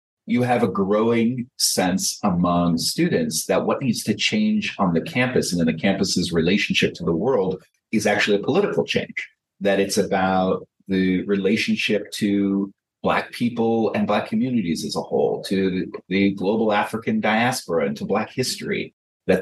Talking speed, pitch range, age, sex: 160 wpm, 95-115 Hz, 30-49, male